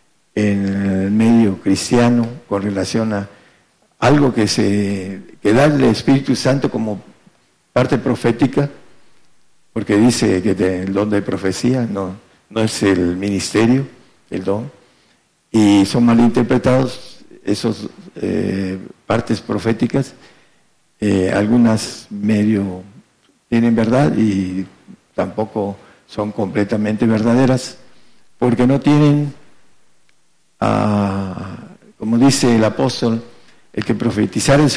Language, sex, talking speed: Spanish, male, 105 wpm